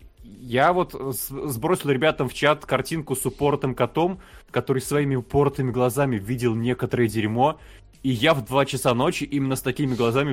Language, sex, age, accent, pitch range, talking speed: Russian, male, 20-39, native, 110-140 Hz, 155 wpm